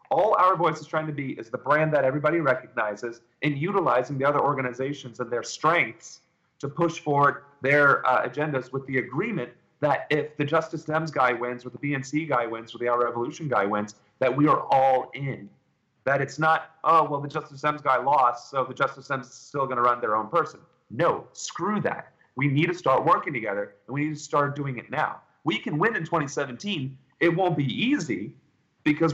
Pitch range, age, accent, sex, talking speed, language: 130-155 Hz, 30-49, American, male, 210 wpm, English